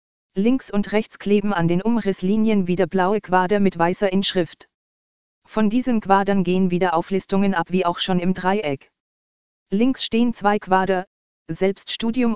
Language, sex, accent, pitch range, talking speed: German, female, German, 175-205 Hz, 145 wpm